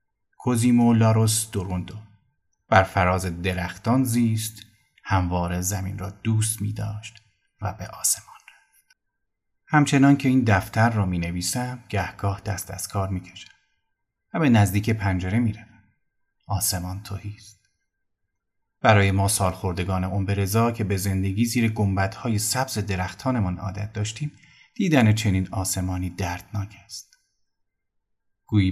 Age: 30-49